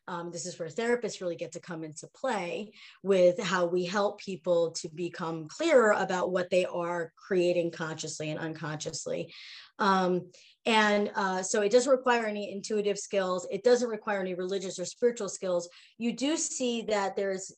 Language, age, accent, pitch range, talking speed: English, 30-49, American, 185-225 Hz, 170 wpm